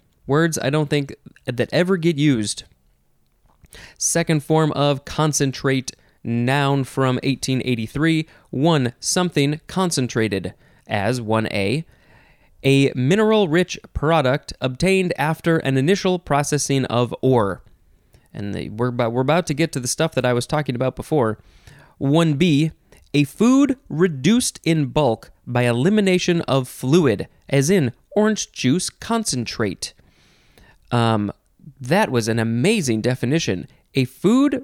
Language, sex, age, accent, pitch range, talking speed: English, male, 20-39, American, 125-170 Hz, 120 wpm